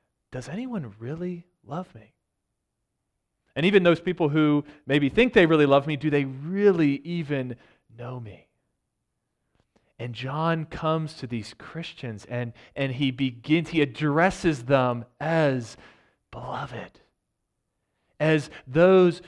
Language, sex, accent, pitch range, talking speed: English, male, American, 140-190 Hz, 120 wpm